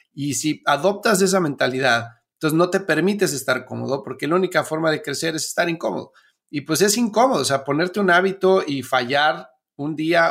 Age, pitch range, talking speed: 40-59, 130-175 Hz, 190 wpm